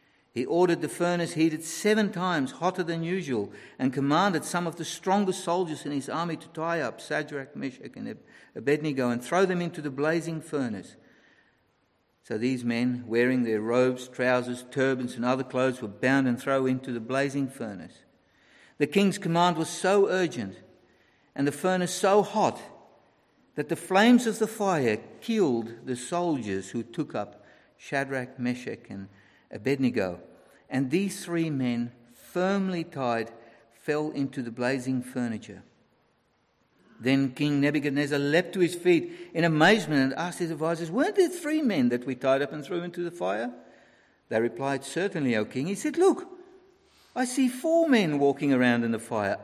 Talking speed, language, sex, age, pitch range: 165 wpm, English, male, 50-69, 125-185 Hz